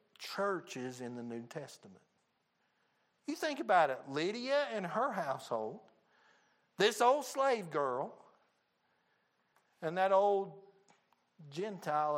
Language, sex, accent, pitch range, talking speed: English, male, American, 130-180 Hz, 105 wpm